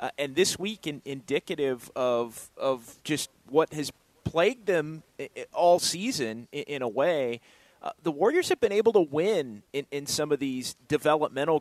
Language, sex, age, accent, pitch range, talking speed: English, male, 30-49, American, 135-175 Hz, 170 wpm